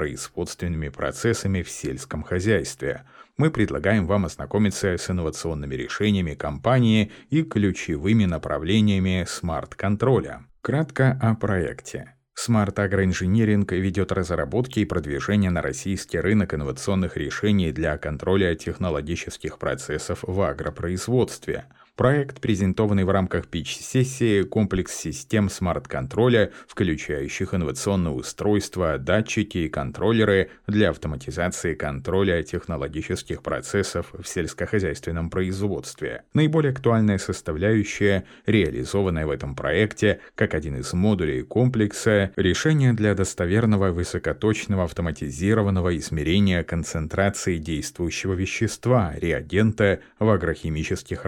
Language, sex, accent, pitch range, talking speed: Russian, male, native, 85-110 Hz, 95 wpm